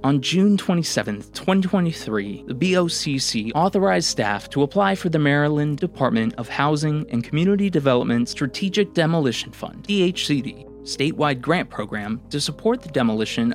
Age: 20-39